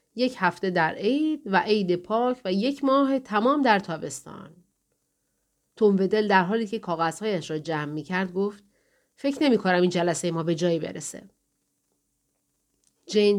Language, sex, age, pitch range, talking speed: Persian, female, 40-59, 170-215 Hz, 145 wpm